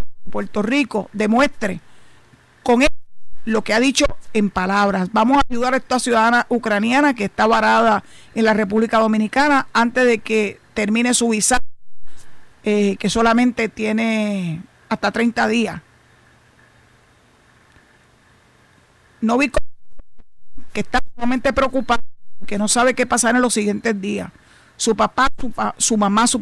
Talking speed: 135 wpm